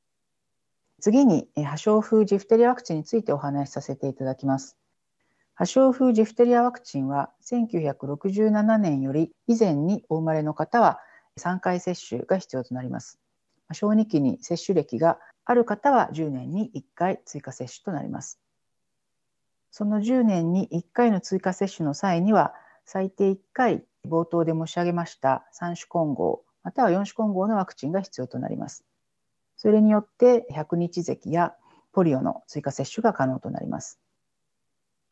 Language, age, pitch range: Japanese, 50-69, 150-220 Hz